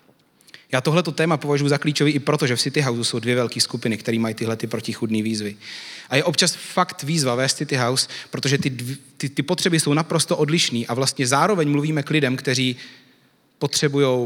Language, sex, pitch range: Czech, male, 120-150 Hz